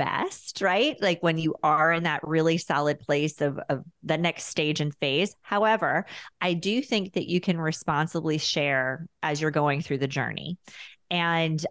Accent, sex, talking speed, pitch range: American, female, 175 wpm, 155-185 Hz